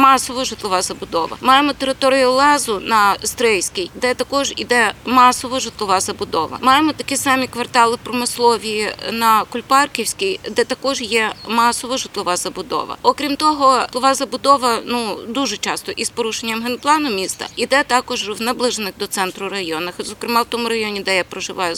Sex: female